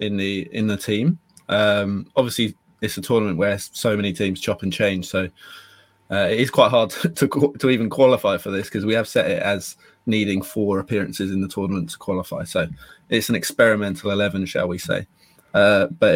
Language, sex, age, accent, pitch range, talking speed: English, male, 20-39, British, 100-120 Hz, 200 wpm